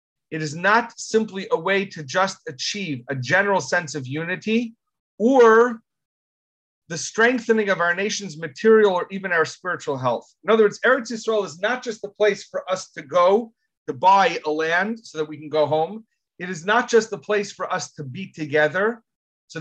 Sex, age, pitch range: male, 30-49, 150-215 Hz